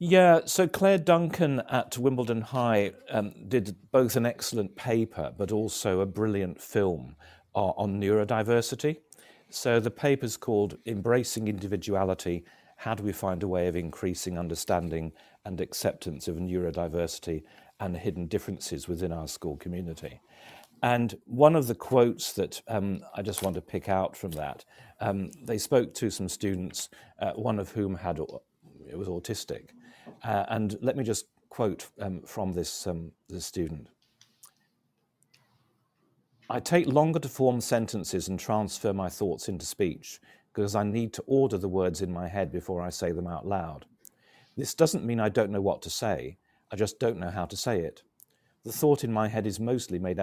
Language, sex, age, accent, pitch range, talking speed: English, male, 50-69, British, 90-120 Hz, 170 wpm